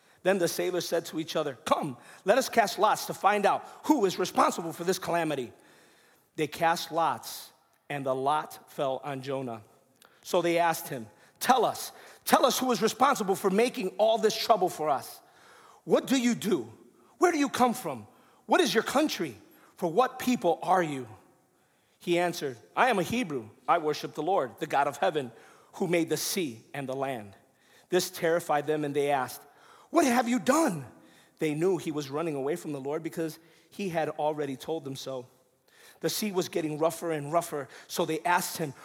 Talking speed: 190 wpm